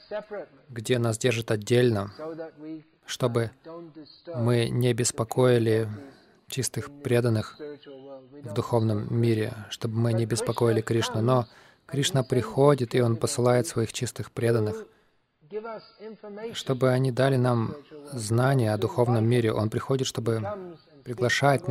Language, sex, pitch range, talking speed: Russian, male, 115-145 Hz, 110 wpm